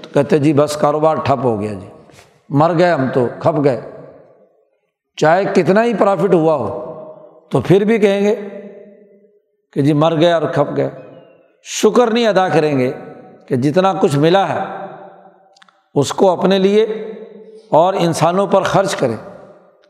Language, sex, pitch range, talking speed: Urdu, male, 160-200 Hz, 155 wpm